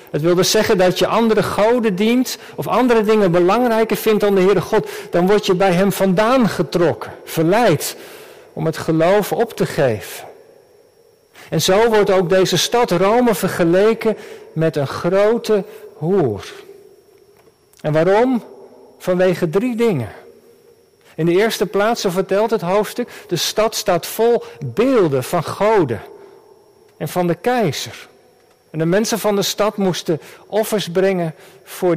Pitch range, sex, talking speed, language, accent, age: 185-240 Hz, male, 145 wpm, Dutch, Dutch, 50-69